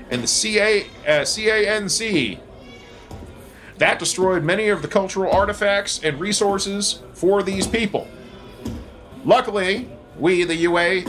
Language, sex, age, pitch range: English, male, 40-59, 145-210 Hz